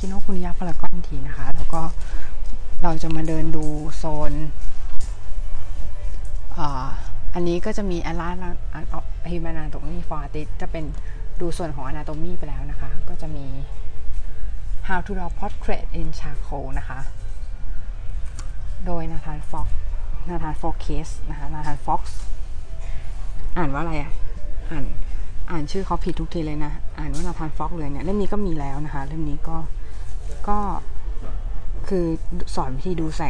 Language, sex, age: Thai, female, 20-39